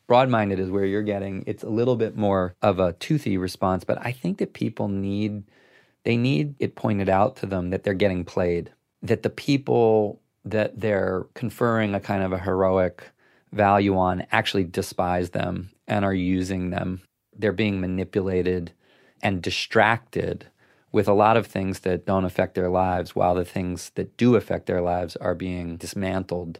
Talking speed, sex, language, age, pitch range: 175 wpm, male, English, 30-49, 90-105 Hz